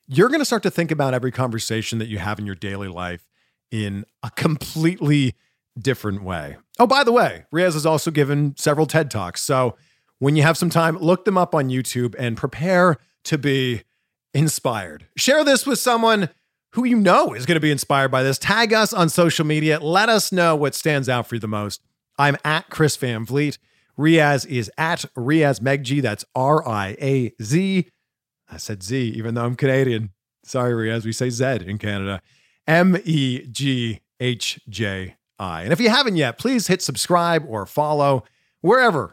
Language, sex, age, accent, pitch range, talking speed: English, male, 40-59, American, 115-165 Hz, 175 wpm